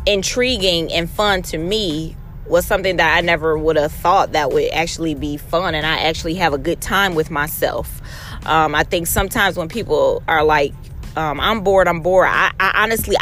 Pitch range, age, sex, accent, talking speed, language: 165-240 Hz, 20-39, female, American, 195 wpm, English